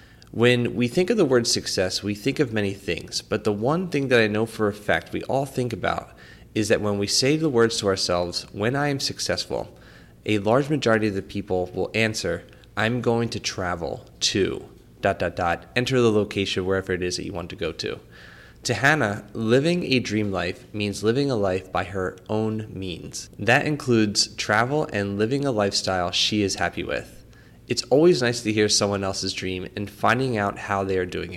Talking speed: 205 wpm